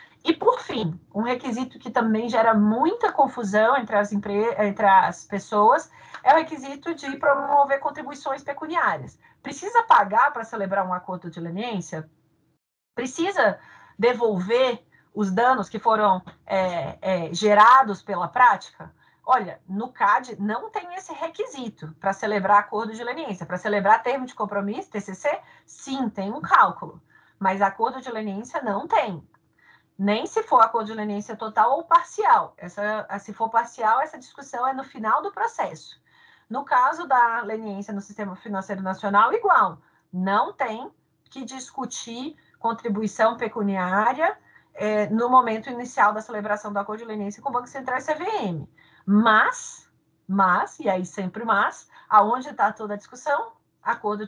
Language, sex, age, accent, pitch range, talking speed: Portuguese, female, 30-49, Brazilian, 200-265 Hz, 145 wpm